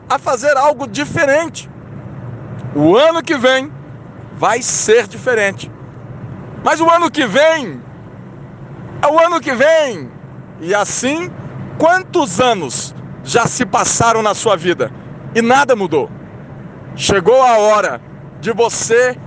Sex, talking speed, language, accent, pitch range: male, 120 wpm, Portuguese, Brazilian, 230-290 Hz